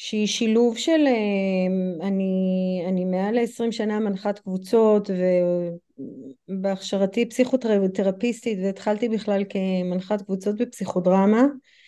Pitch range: 190-240 Hz